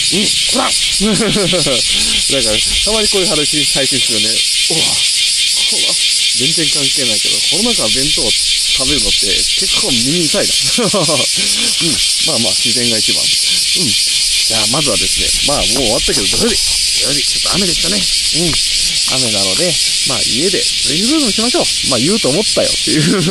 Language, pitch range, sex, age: Japanese, 120-190 Hz, male, 20-39